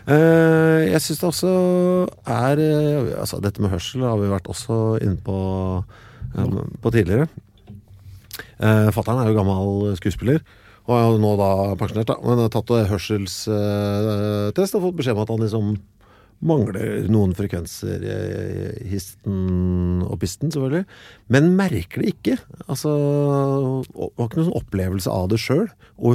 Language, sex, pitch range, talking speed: English, male, 100-130 Hz, 145 wpm